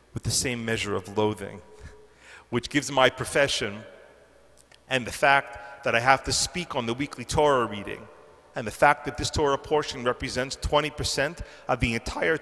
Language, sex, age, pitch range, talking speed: English, male, 40-59, 130-170 Hz, 175 wpm